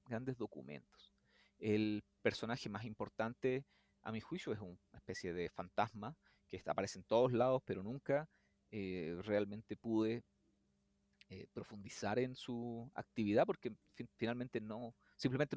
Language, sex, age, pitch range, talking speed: Spanish, male, 30-49, 100-130 Hz, 125 wpm